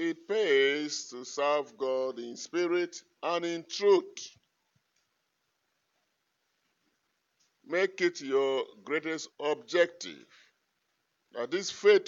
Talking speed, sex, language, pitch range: 90 wpm, male, English, 135-190 Hz